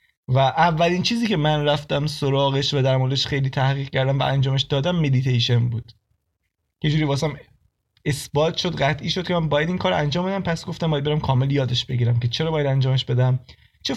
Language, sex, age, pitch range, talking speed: Persian, male, 20-39, 125-160 Hz, 195 wpm